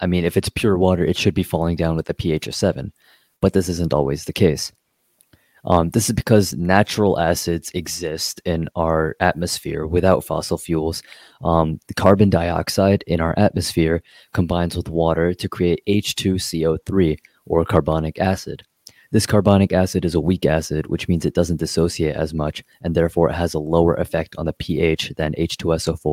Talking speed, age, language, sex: 175 wpm, 20-39, English, male